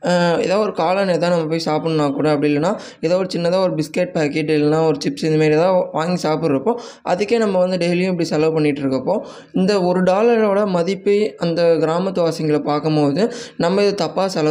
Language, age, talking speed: Tamil, 20-39, 175 wpm